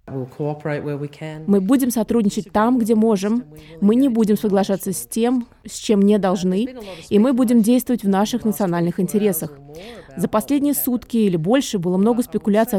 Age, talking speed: 20-39, 150 wpm